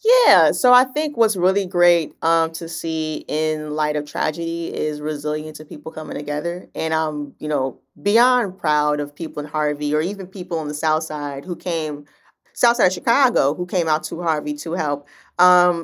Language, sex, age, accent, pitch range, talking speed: English, female, 20-39, American, 155-180 Hz, 195 wpm